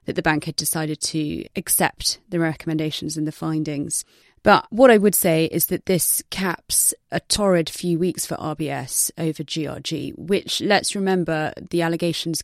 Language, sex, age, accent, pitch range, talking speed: English, female, 30-49, British, 155-175 Hz, 165 wpm